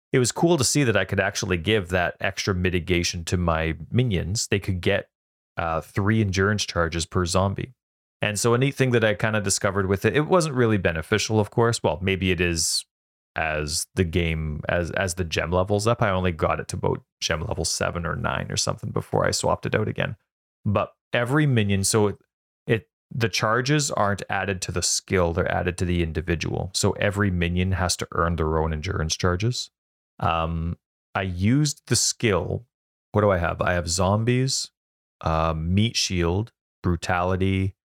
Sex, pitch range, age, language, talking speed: male, 85-110 Hz, 30-49, English, 185 wpm